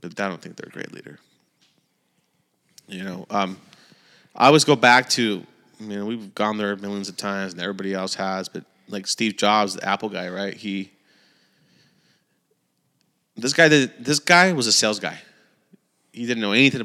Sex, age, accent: male, 30-49, American